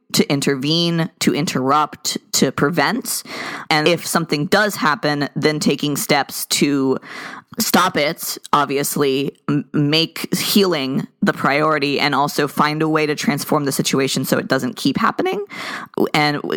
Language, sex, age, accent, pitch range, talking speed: English, female, 20-39, American, 140-165 Hz, 135 wpm